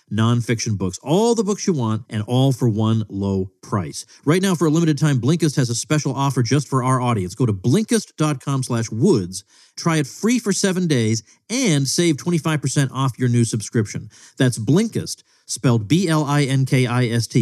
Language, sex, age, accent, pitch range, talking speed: English, male, 40-59, American, 110-155 Hz, 170 wpm